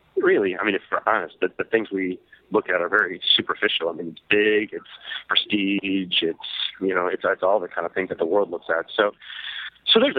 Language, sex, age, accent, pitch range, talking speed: English, male, 40-59, American, 90-120 Hz, 230 wpm